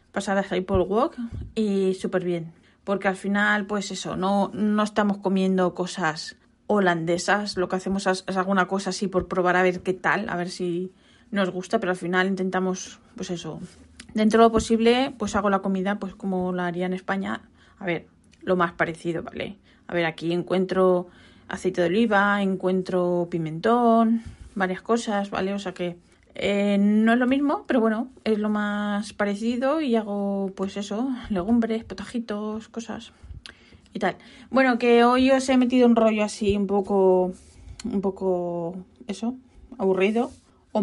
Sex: female